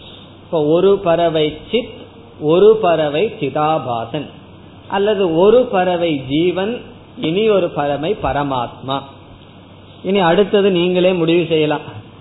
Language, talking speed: Tamil, 95 wpm